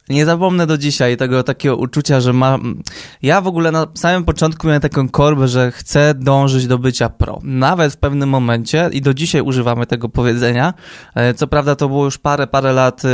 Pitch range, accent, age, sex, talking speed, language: 125-145 Hz, native, 20-39, male, 190 wpm, Polish